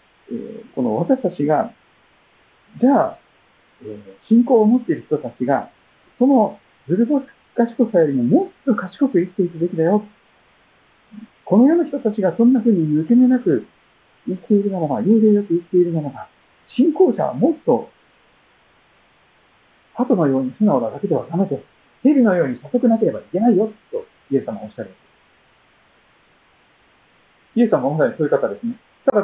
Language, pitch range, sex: Japanese, 150-250 Hz, male